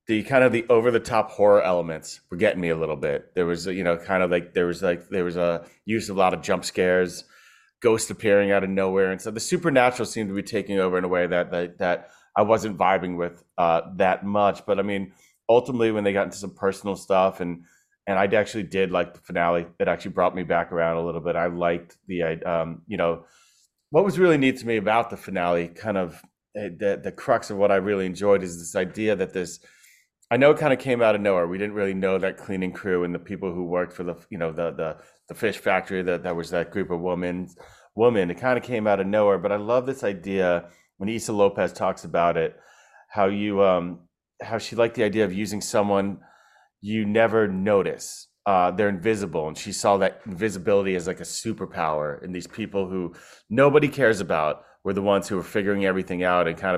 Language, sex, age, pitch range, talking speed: English, male, 30-49, 90-105 Hz, 230 wpm